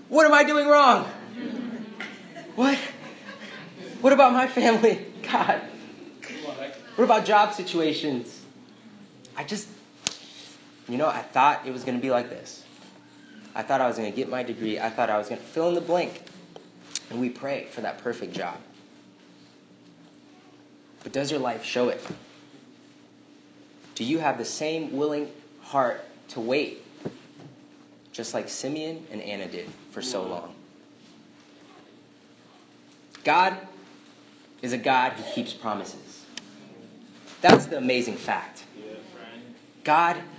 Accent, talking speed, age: American, 135 wpm, 30-49